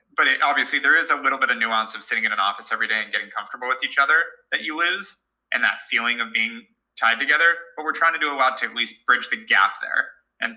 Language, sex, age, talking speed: English, male, 20-39, 265 wpm